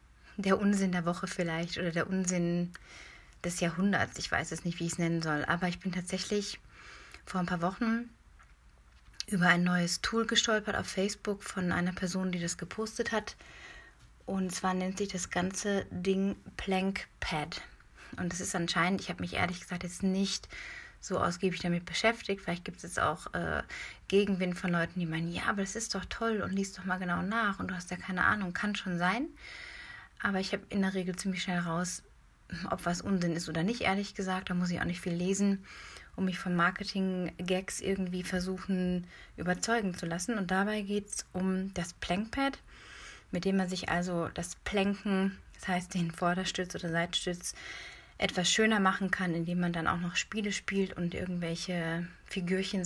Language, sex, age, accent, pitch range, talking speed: German, female, 30-49, German, 175-195 Hz, 185 wpm